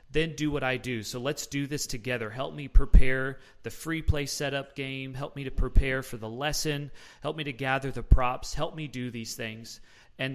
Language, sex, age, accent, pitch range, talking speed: English, male, 30-49, American, 115-140 Hz, 215 wpm